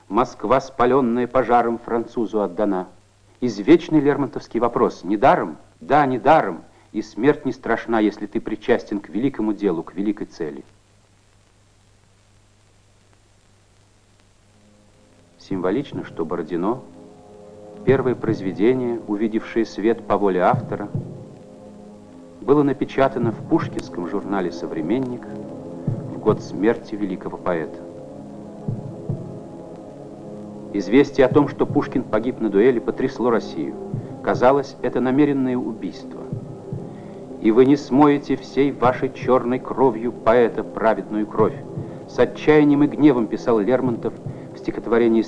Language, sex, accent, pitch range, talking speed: Russian, male, native, 100-130 Hz, 105 wpm